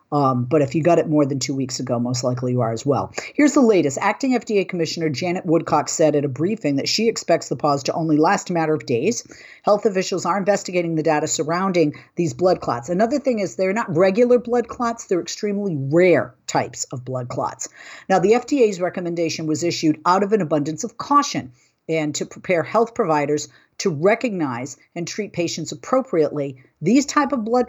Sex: female